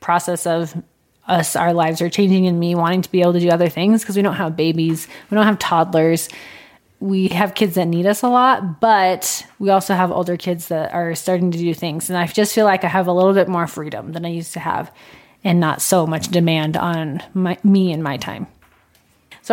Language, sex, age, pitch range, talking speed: English, female, 20-39, 170-200 Hz, 225 wpm